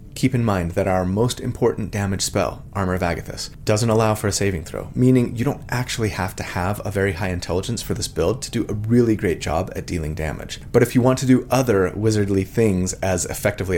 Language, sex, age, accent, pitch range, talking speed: English, male, 30-49, American, 90-120 Hz, 225 wpm